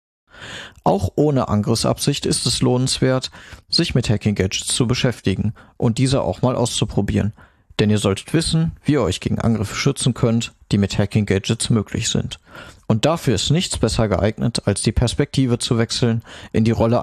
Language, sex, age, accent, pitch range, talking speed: German, male, 50-69, German, 105-130 Hz, 170 wpm